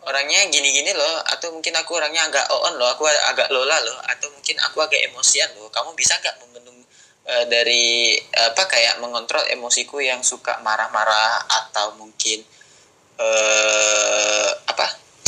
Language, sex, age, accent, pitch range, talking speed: Indonesian, male, 10-29, native, 110-135 Hz, 145 wpm